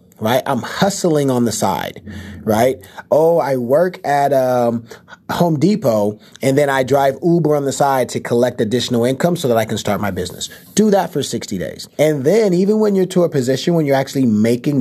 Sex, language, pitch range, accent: male, English, 115-150 Hz, American